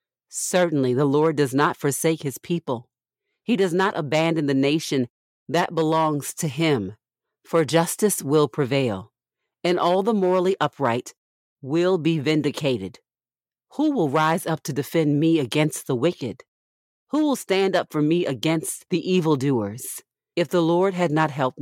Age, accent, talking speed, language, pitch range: 40-59, American, 155 wpm, English, 135-170 Hz